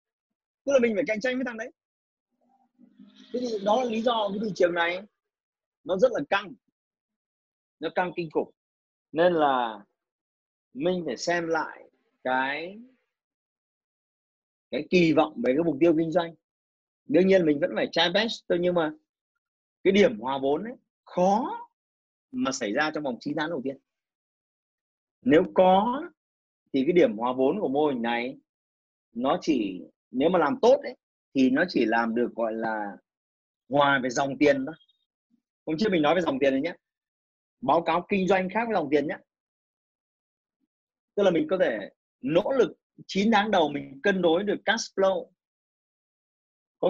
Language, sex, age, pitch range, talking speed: Vietnamese, male, 30-49, 150-240 Hz, 170 wpm